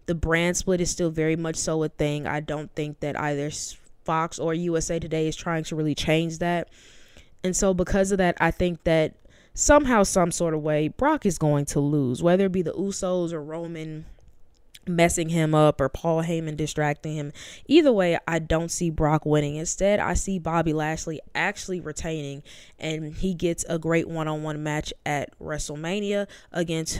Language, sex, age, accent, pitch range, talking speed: English, female, 20-39, American, 155-195 Hz, 180 wpm